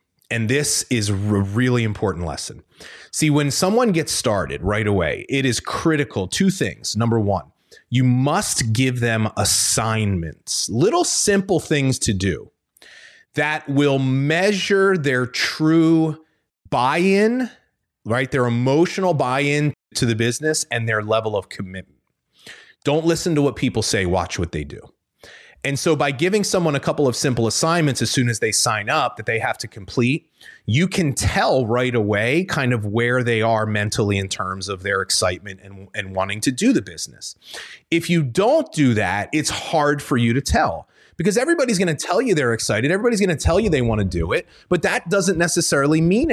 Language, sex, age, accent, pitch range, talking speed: English, male, 30-49, American, 110-160 Hz, 175 wpm